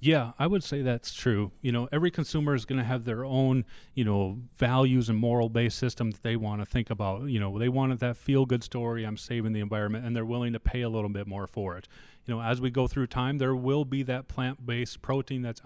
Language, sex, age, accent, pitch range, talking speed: English, male, 30-49, American, 115-135 Hz, 250 wpm